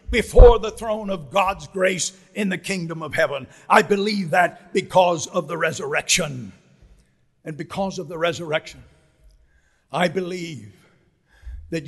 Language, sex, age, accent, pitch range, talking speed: English, male, 60-79, American, 160-200 Hz, 130 wpm